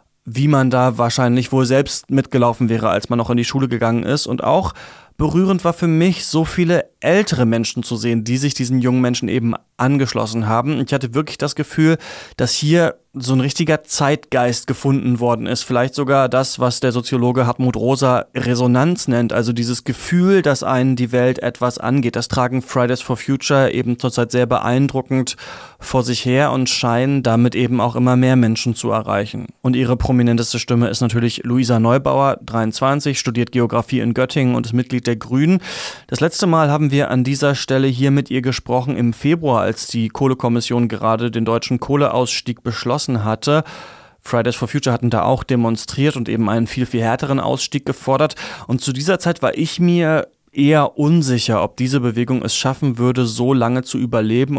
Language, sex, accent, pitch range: German, male, German, 120-135 Hz